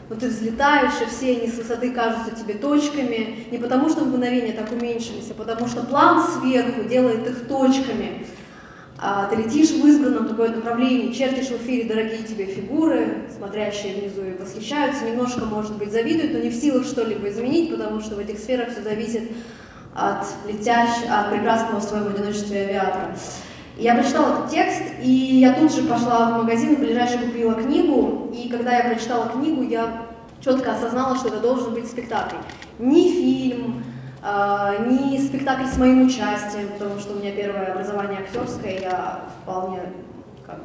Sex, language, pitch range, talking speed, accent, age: female, Russian, 215-255 Hz, 165 wpm, native, 20-39